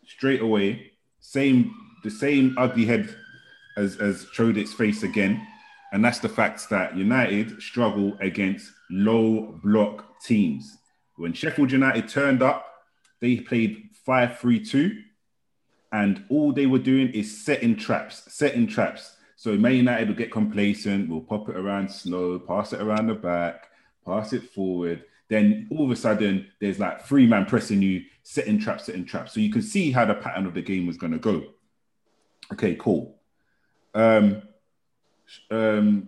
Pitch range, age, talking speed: 95-125 Hz, 30-49, 155 wpm